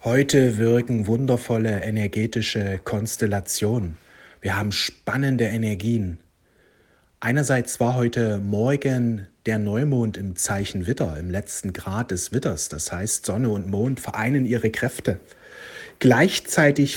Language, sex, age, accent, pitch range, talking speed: German, male, 60-79, German, 110-140 Hz, 115 wpm